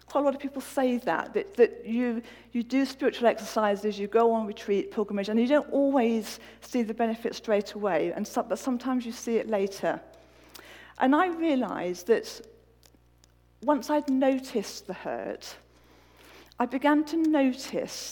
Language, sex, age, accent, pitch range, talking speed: English, female, 50-69, British, 200-255 Hz, 160 wpm